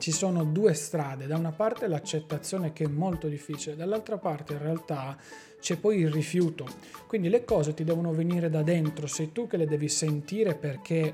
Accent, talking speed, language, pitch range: native, 190 wpm, Italian, 150-175 Hz